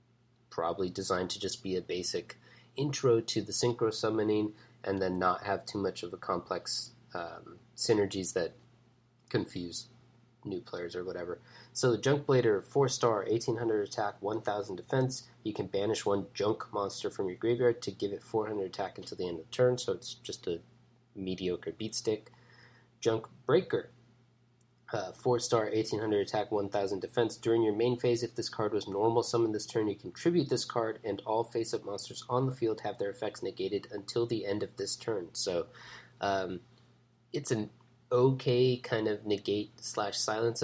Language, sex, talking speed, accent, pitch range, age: English, male, 170 wpm, American, 105-120 Hz, 20-39